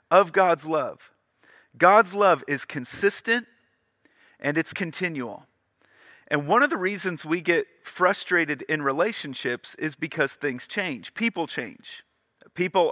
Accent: American